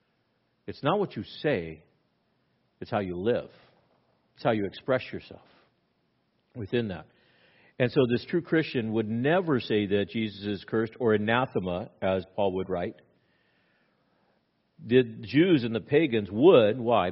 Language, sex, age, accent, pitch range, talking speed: English, male, 50-69, American, 100-120 Hz, 145 wpm